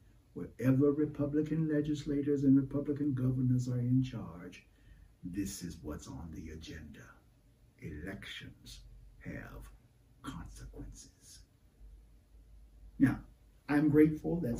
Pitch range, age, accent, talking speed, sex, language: 110-145 Hz, 60-79, American, 90 wpm, male, English